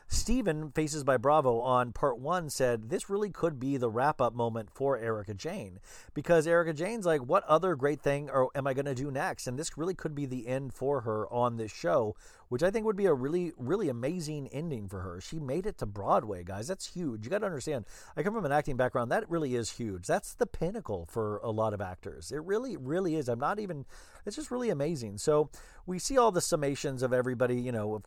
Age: 40-59